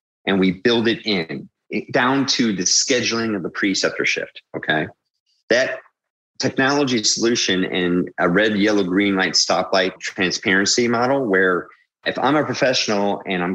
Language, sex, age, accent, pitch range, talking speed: English, male, 30-49, American, 90-115 Hz, 145 wpm